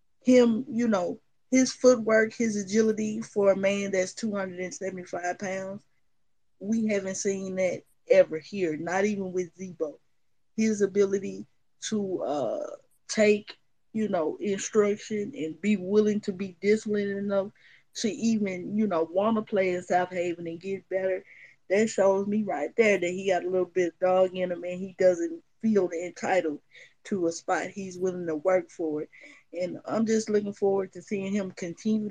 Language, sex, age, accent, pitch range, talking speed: English, female, 20-39, American, 180-215 Hz, 165 wpm